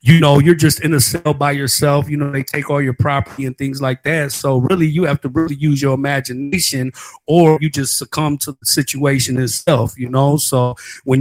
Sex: male